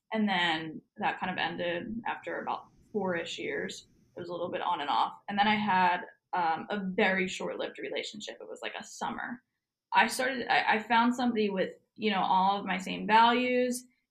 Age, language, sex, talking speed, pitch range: 10-29, English, female, 205 wpm, 185-225 Hz